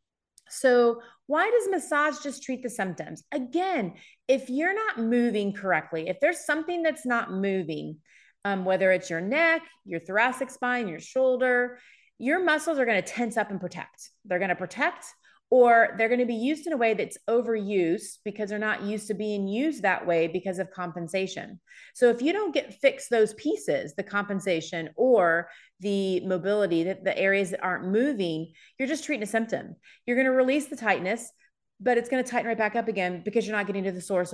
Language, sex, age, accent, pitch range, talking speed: English, female, 30-49, American, 185-240 Hz, 185 wpm